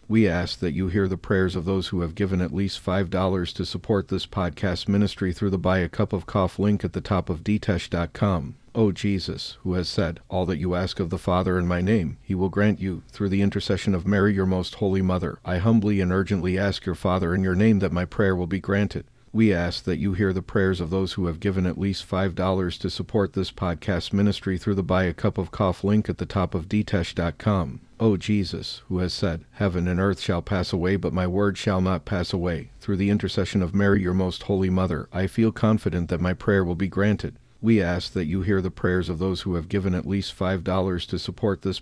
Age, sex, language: 50-69, male, English